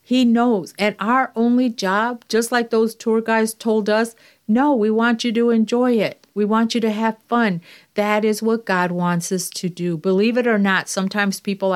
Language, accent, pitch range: English, American, 185-225 Hz